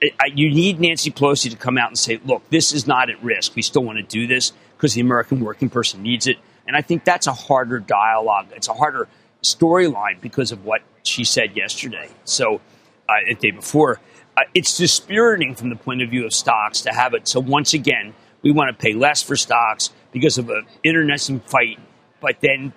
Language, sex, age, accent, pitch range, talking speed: English, male, 50-69, American, 120-155 Hz, 210 wpm